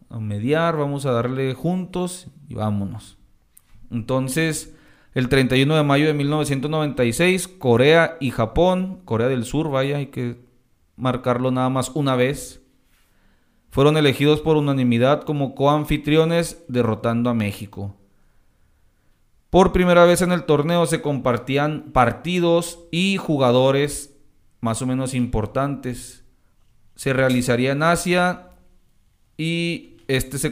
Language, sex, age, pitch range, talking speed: Spanish, male, 40-59, 115-145 Hz, 120 wpm